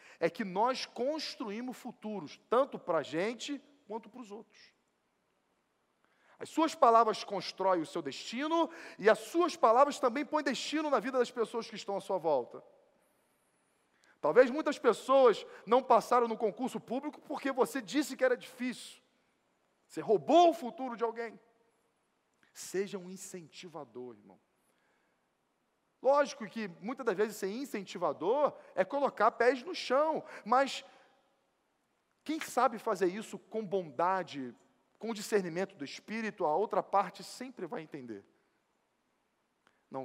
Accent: Brazilian